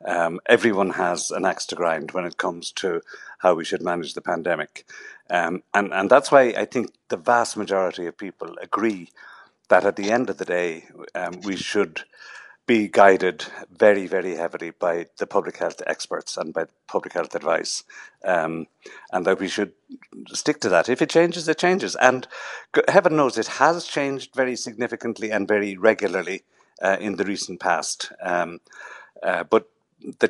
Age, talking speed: 60-79, 175 wpm